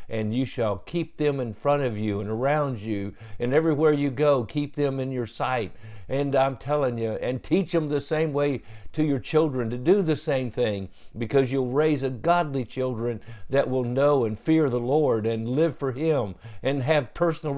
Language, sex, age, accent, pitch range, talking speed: English, male, 50-69, American, 115-155 Hz, 200 wpm